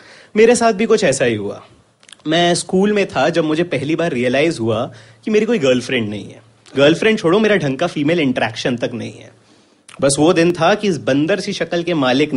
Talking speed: 205 wpm